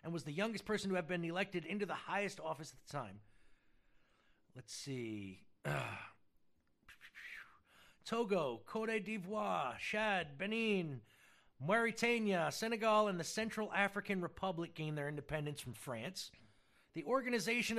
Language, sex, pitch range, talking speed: English, male, 150-210 Hz, 130 wpm